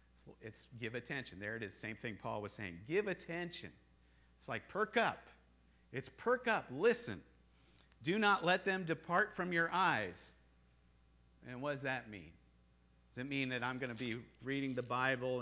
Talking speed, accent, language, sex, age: 175 wpm, American, English, male, 50-69